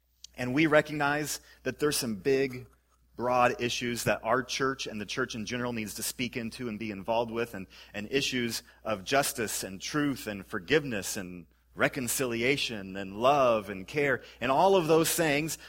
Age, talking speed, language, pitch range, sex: 30-49, 170 wpm, English, 100-135 Hz, male